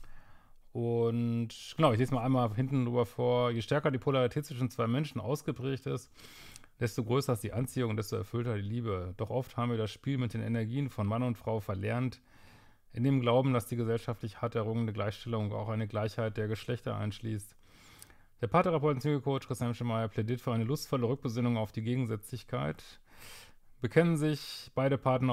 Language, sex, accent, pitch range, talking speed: German, male, German, 110-130 Hz, 175 wpm